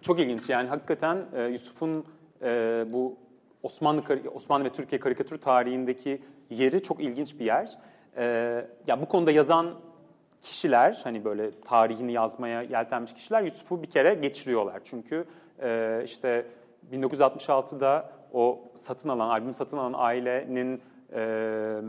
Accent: native